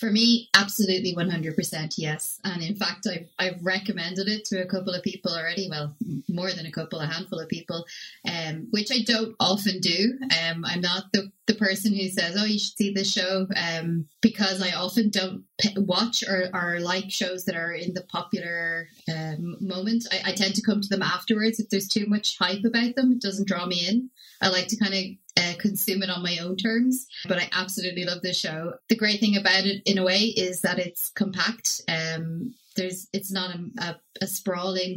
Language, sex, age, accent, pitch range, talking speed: English, female, 20-39, Irish, 175-210 Hz, 215 wpm